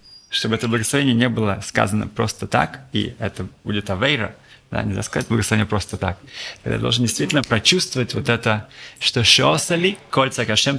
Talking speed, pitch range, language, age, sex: 165 wpm, 110-135 Hz, Russian, 20-39, male